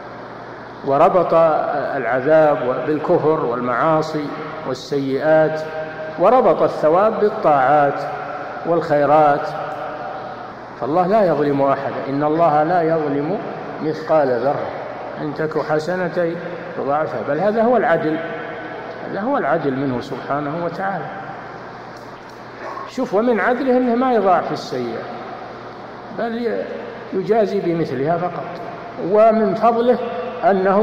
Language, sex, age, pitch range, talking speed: Arabic, male, 50-69, 145-195 Hz, 90 wpm